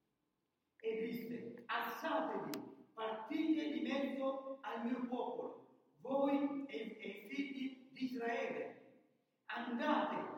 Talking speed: 95 wpm